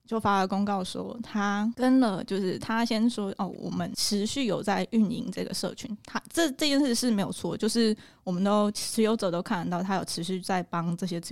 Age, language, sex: 20-39, Chinese, female